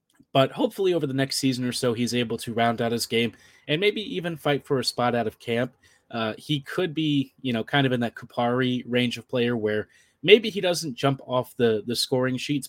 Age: 30-49